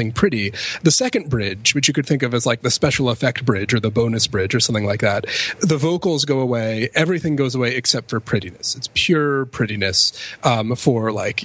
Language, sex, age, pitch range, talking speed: English, male, 30-49, 120-155 Hz, 205 wpm